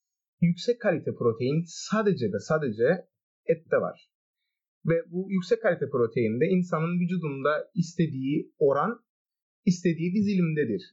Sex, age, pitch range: male, 30-49, 155-230 Hz